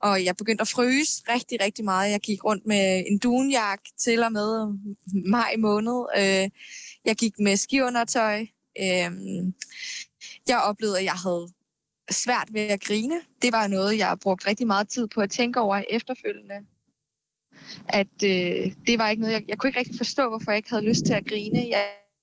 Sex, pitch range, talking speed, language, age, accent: female, 190-225 Hz, 180 wpm, Danish, 20-39, native